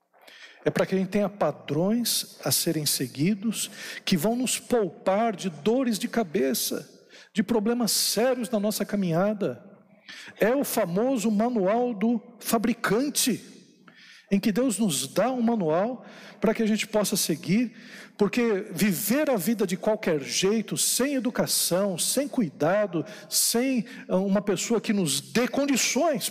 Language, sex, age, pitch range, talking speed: Portuguese, male, 60-79, 185-235 Hz, 140 wpm